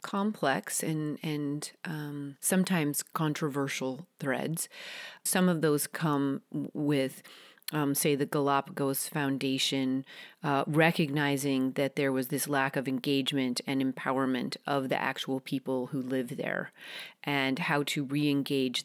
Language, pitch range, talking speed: English, 135-160 Hz, 125 wpm